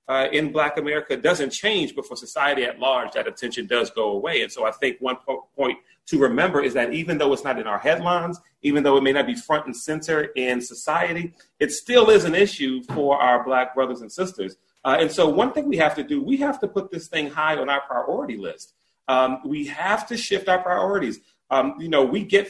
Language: English